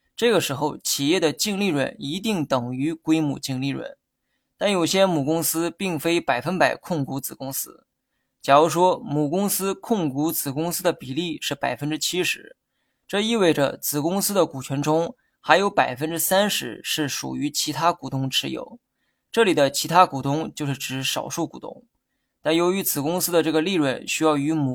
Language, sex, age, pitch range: Chinese, male, 20-39, 145-185 Hz